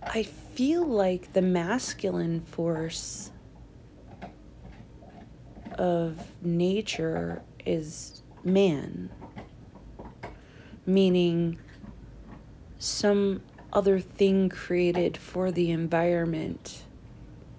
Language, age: English, 30-49